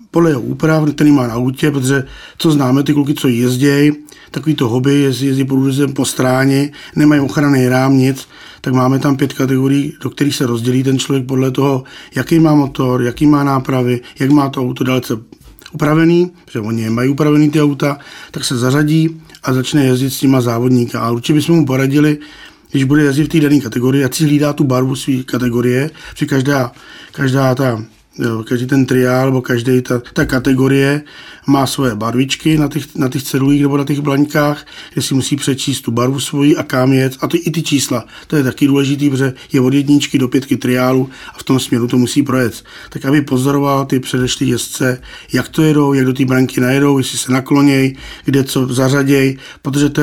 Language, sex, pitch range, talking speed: Czech, male, 130-145 Hz, 190 wpm